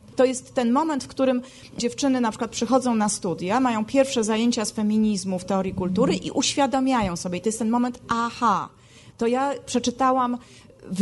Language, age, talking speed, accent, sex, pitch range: Polish, 30-49, 180 wpm, native, female, 220-265 Hz